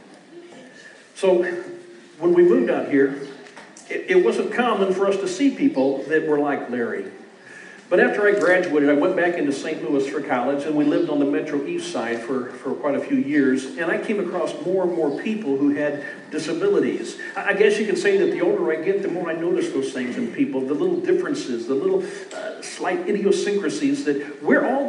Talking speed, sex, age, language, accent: 205 wpm, male, 50-69, English, American